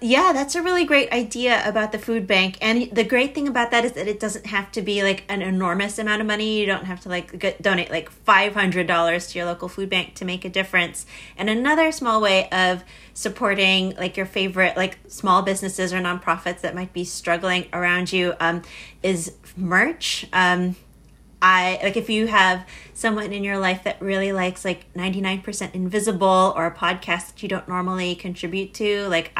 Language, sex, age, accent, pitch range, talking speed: English, female, 30-49, American, 180-215 Hz, 190 wpm